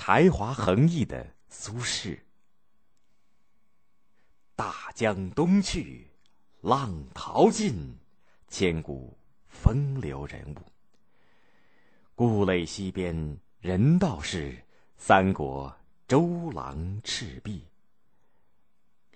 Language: Chinese